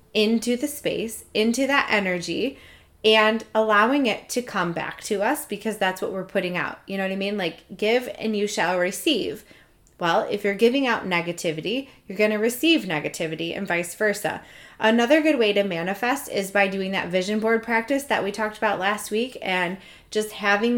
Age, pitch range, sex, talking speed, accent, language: 20-39, 185-225 Hz, female, 190 wpm, American, English